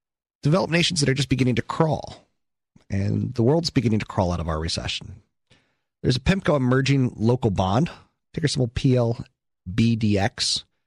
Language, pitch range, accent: English, 95-135 Hz, American